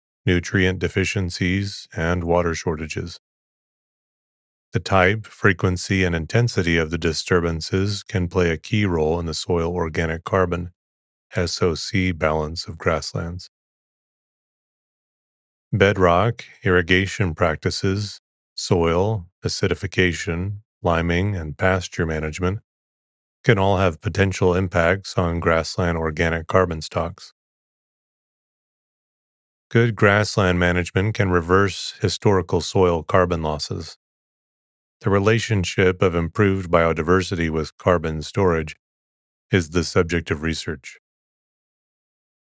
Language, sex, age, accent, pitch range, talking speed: English, male, 30-49, American, 85-95 Hz, 95 wpm